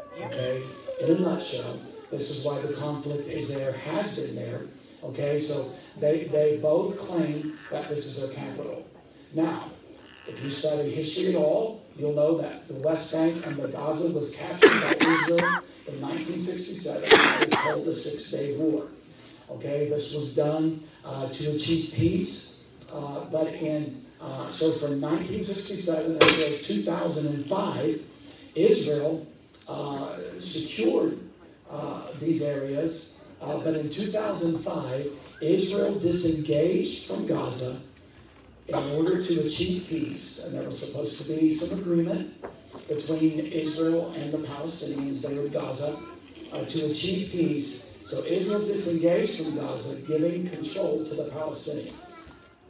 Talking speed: 140 wpm